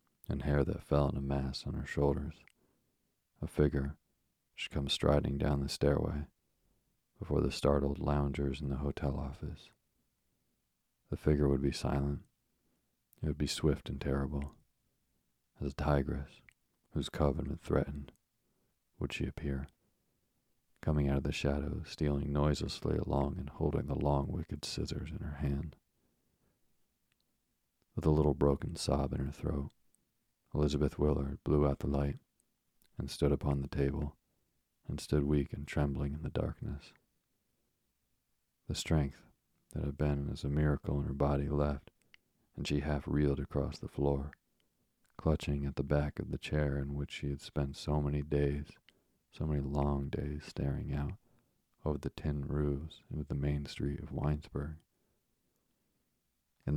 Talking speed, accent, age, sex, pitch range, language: 150 wpm, American, 40-59, male, 70-75 Hz, English